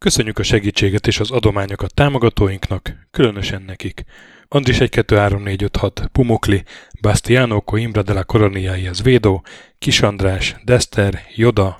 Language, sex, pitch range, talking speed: Hungarian, male, 100-115 Hz, 90 wpm